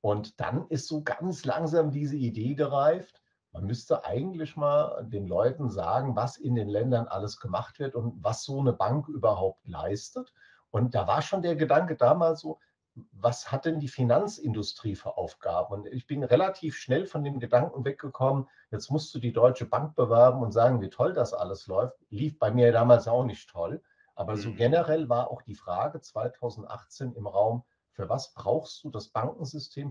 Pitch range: 115-145 Hz